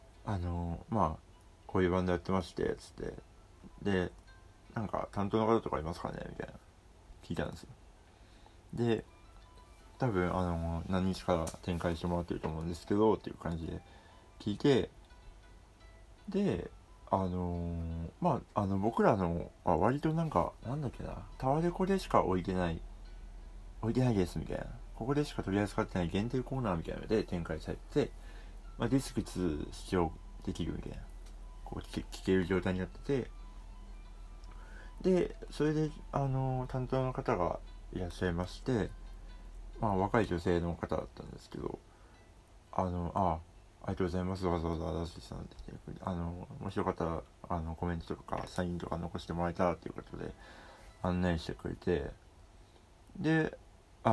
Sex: male